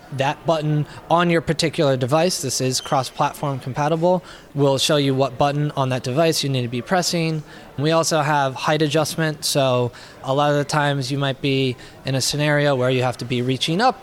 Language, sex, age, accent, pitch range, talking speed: English, male, 20-39, American, 135-160 Hz, 200 wpm